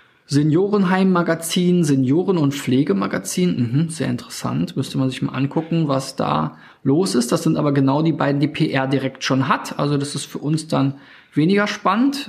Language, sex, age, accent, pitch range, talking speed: German, male, 20-39, German, 140-180 Hz, 165 wpm